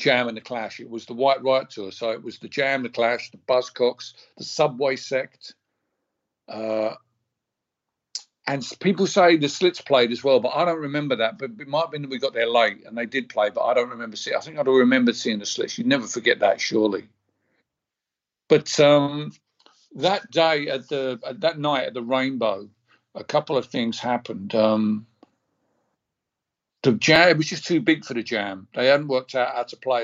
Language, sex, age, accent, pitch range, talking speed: English, male, 50-69, British, 115-140 Hz, 205 wpm